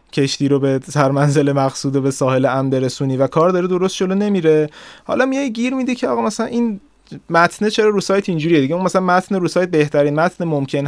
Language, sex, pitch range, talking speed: Persian, male, 125-175 Hz, 205 wpm